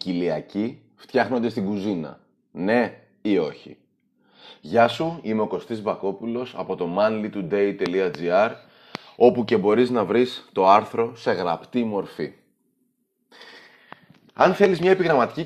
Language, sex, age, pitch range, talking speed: Greek, male, 30-49, 95-125 Hz, 115 wpm